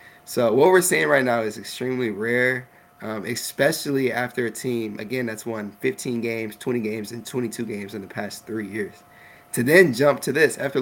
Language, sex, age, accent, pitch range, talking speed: English, male, 20-39, American, 115-135 Hz, 195 wpm